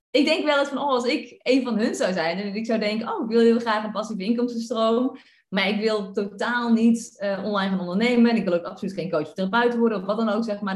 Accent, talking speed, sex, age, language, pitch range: Dutch, 280 wpm, female, 30-49, Dutch, 215-260 Hz